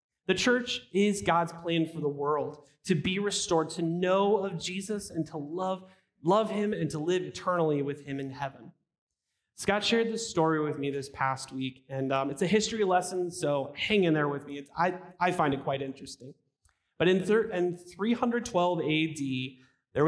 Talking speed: 190 wpm